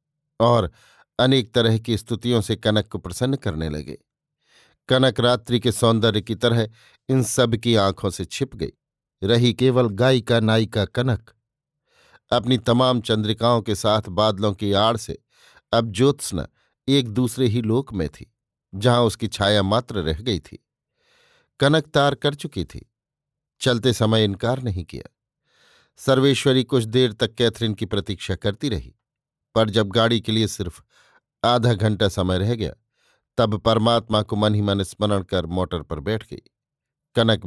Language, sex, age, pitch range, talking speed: Hindi, male, 50-69, 105-125 Hz, 155 wpm